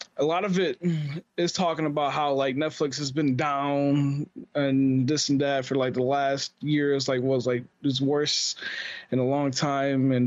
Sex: male